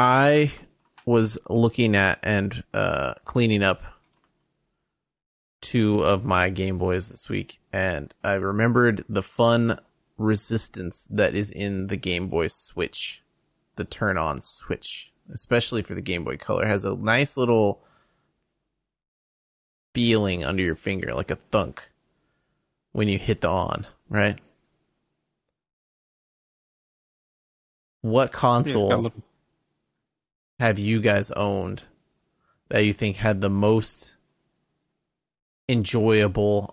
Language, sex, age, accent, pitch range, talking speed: English, male, 20-39, American, 95-115 Hz, 110 wpm